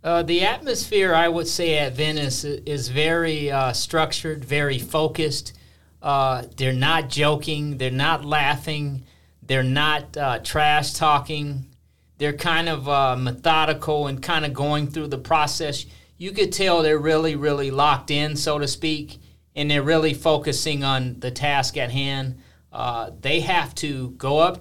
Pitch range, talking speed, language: 130-160 Hz, 155 wpm, English